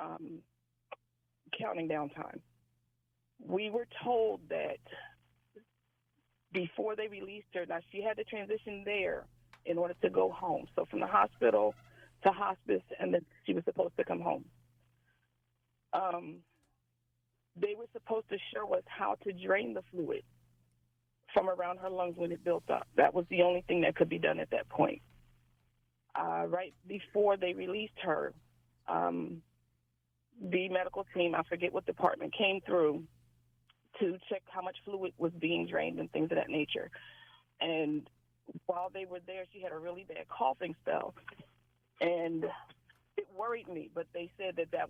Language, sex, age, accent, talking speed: English, female, 40-59, American, 160 wpm